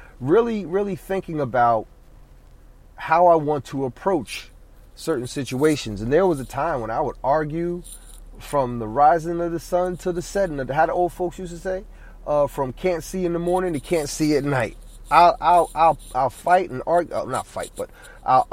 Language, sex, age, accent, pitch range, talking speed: English, male, 30-49, American, 125-180 Hz, 200 wpm